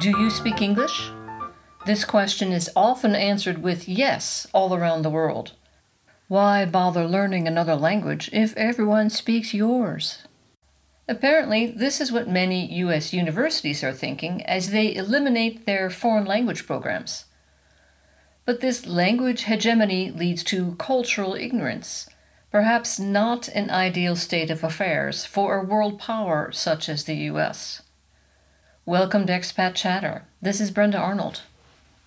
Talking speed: 135 wpm